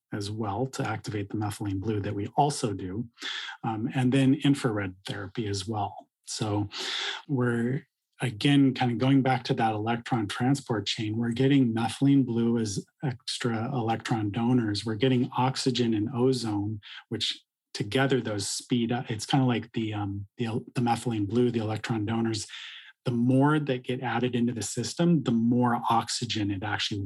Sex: male